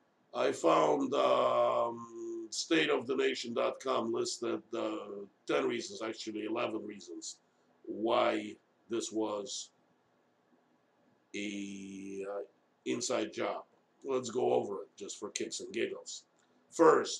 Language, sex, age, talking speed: English, male, 50-69, 100 wpm